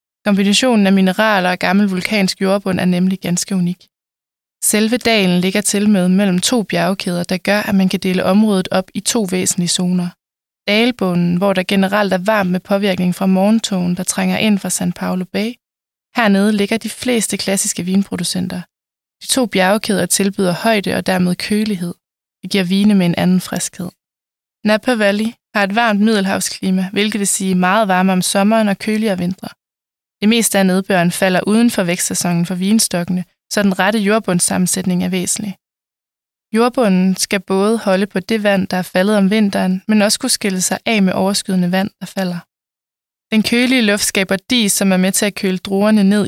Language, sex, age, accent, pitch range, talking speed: Danish, female, 20-39, native, 185-210 Hz, 175 wpm